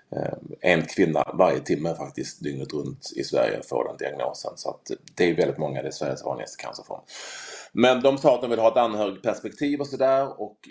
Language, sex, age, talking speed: Swedish, male, 30-49, 200 wpm